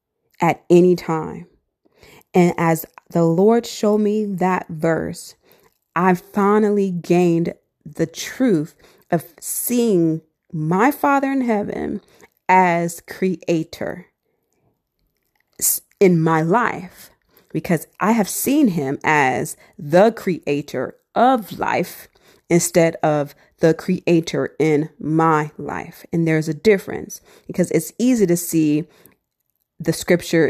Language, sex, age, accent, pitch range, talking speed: English, female, 30-49, American, 155-185 Hz, 110 wpm